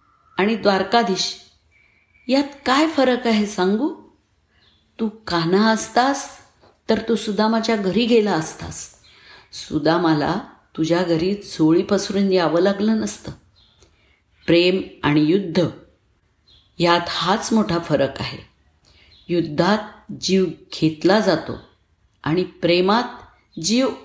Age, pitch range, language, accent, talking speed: 50-69, 170-230 Hz, Marathi, native, 95 wpm